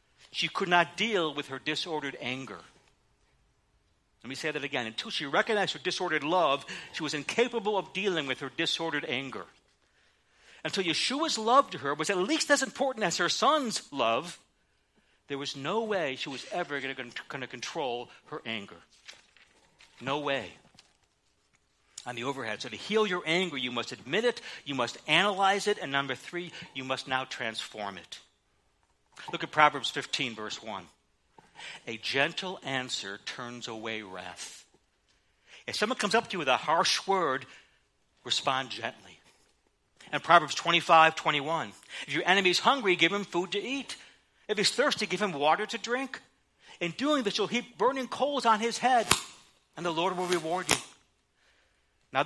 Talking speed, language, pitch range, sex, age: 165 wpm, English, 130-200 Hz, male, 60-79